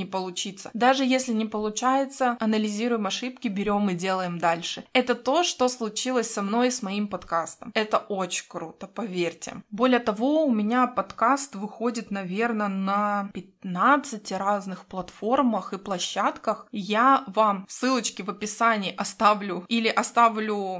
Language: Russian